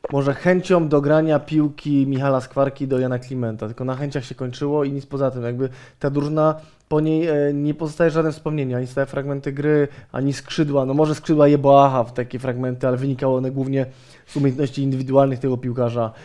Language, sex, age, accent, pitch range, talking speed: Polish, male, 20-39, native, 130-150 Hz, 190 wpm